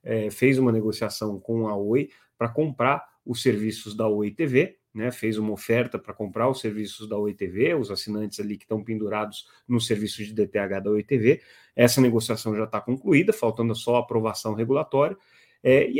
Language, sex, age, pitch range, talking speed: Portuguese, male, 30-49, 105-120 Hz, 175 wpm